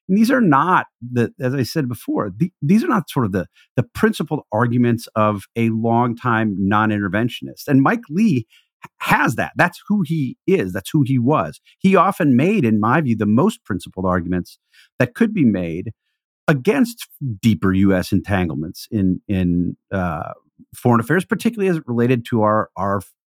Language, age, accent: English, 50-69, American